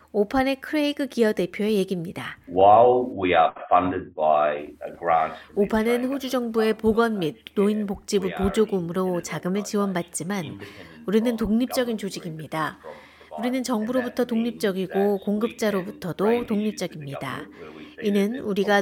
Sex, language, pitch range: female, Korean, 180-225 Hz